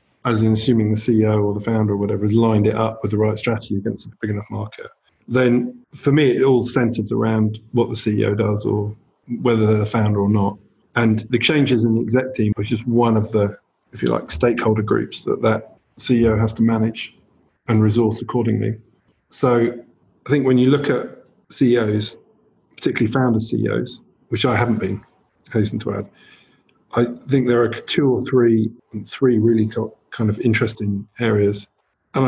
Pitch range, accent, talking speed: 110-125 Hz, British, 185 wpm